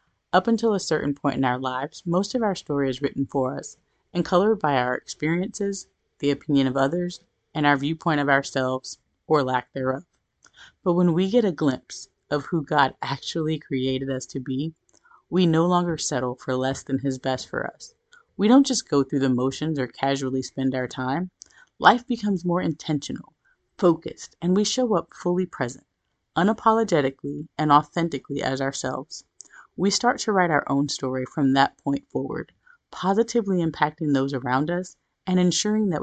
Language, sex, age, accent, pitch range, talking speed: English, female, 30-49, American, 135-175 Hz, 175 wpm